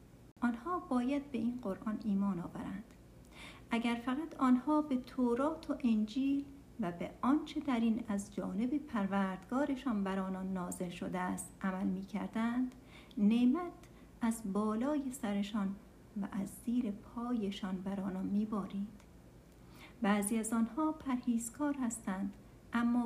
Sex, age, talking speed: female, 60-79, 125 wpm